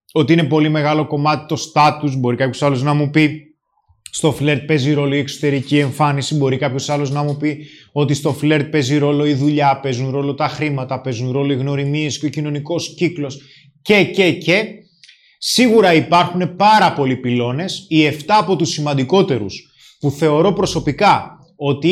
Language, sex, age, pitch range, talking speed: Greek, male, 20-39, 140-180 Hz, 170 wpm